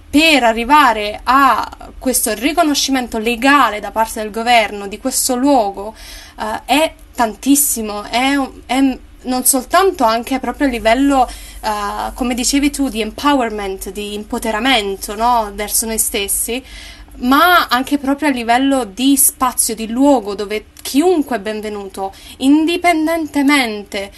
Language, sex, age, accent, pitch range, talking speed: Italian, female, 20-39, native, 225-285 Hz, 125 wpm